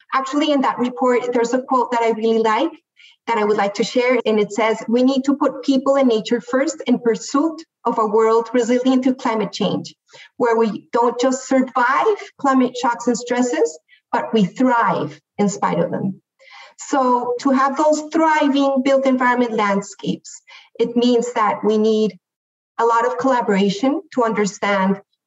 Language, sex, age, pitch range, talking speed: English, female, 40-59, 210-265 Hz, 170 wpm